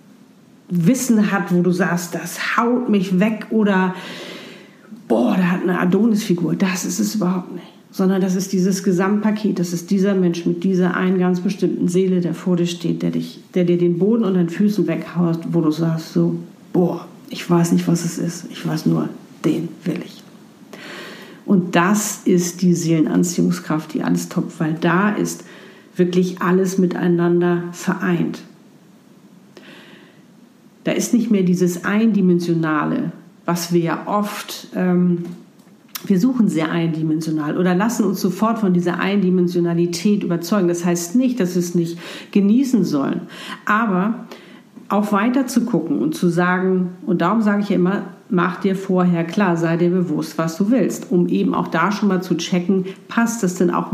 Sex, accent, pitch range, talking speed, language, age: female, German, 175-210 Hz, 165 wpm, German, 50-69